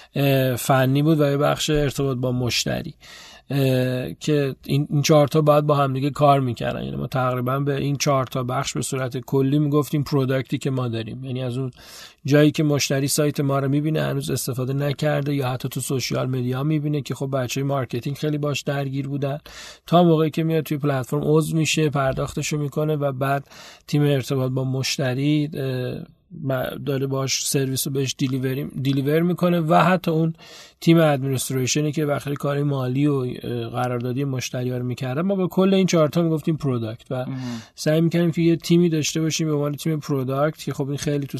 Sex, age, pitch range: male, 40-59, 130-150 Hz